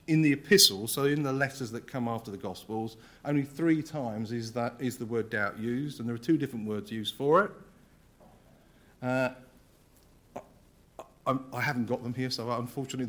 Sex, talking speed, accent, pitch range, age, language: male, 180 wpm, British, 115-140 Hz, 50-69, English